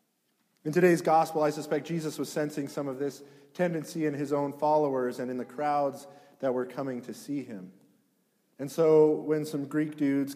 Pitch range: 125-155 Hz